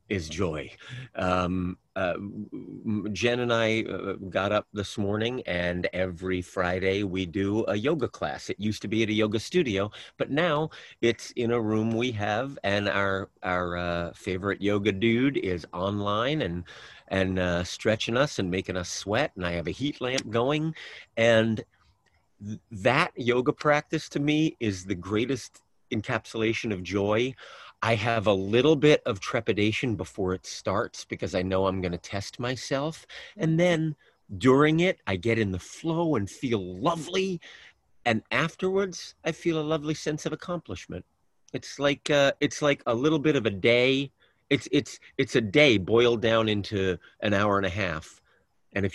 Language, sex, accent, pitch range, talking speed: English, male, American, 95-130 Hz, 170 wpm